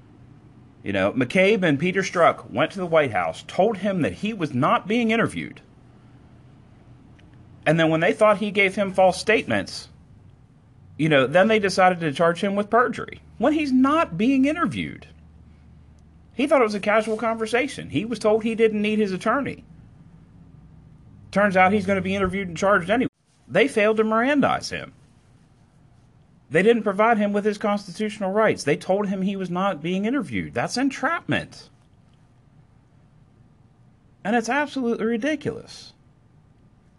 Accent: American